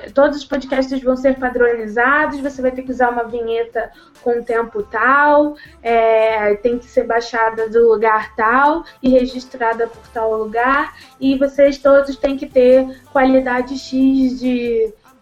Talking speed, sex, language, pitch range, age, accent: 140 wpm, female, Portuguese, 250-305 Hz, 20-39, Brazilian